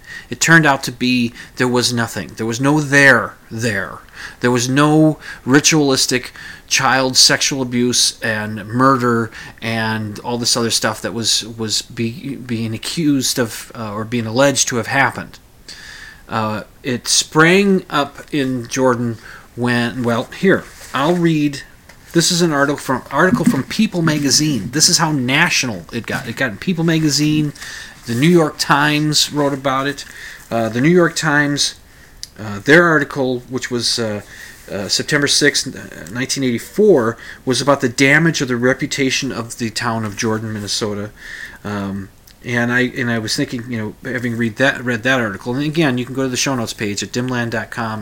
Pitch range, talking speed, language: 115-140 Hz, 165 wpm, English